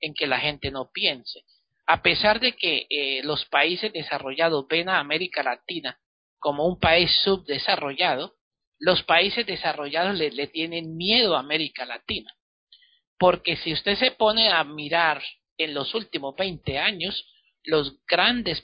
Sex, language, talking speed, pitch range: male, Spanish, 150 wpm, 140-180 Hz